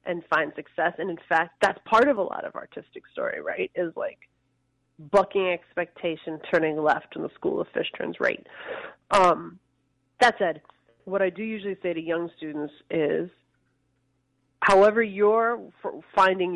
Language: English